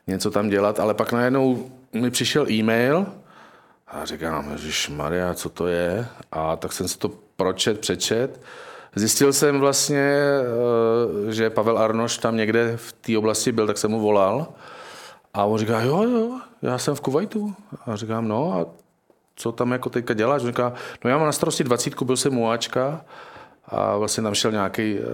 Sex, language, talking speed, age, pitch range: male, Czech, 175 wpm, 40-59, 105-120 Hz